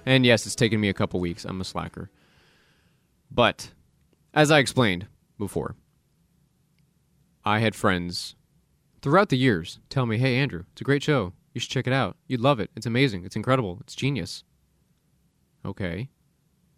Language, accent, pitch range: English, American, 100-135 Hz